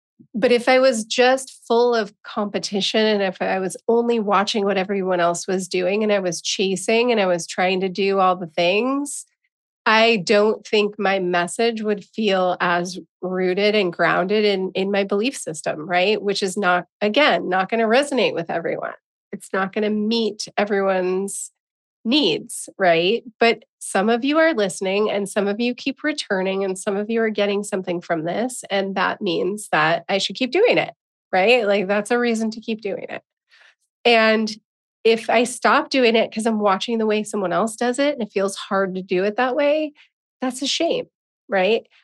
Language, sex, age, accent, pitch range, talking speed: English, female, 30-49, American, 190-235 Hz, 190 wpm